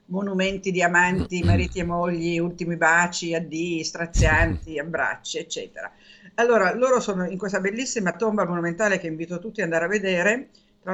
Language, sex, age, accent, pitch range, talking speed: Italian, female, 50-69, native, 170-215 Hz, 155 wpm